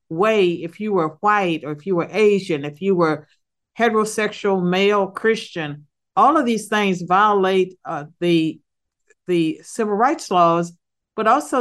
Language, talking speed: English, 150 wpm